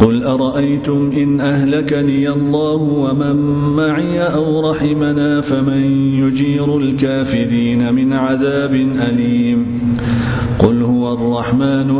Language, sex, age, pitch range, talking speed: English, male, 40-59, 120-145 Hz, 90 wpm